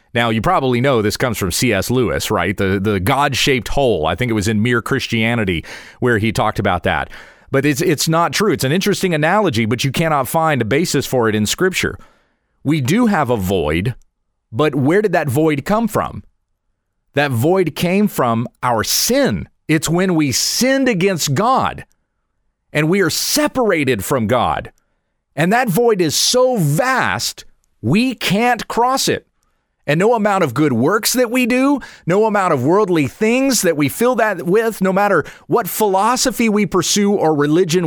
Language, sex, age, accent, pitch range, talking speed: English, male, 40-59, American, 115-195 Hz, 175 wpm